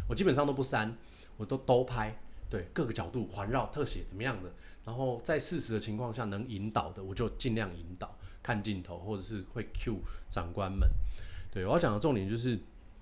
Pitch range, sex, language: 95-130 Hz, male, Chinese